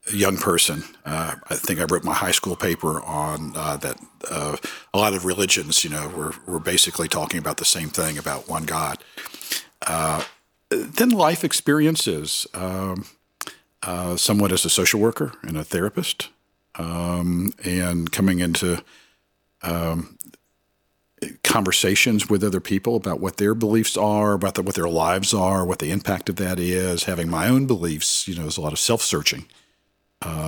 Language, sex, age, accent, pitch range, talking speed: English, male, 50-69, American, 90-100 Hz, 170 wpm